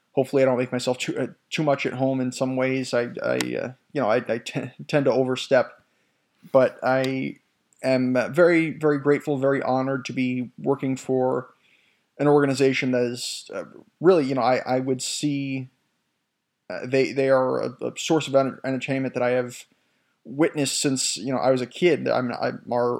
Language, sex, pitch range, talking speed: English, male, 125-140 Hz, 195 wpm